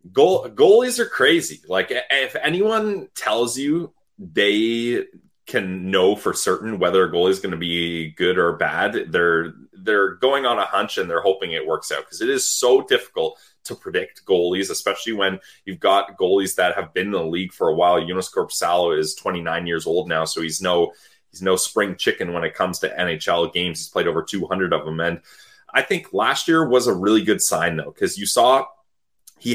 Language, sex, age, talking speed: English, male, 20-39, 200 wpm